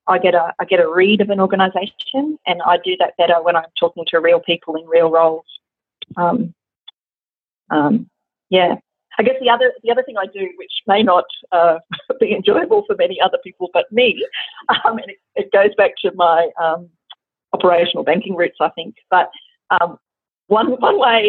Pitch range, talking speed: 175-220 Hz, 190 wpm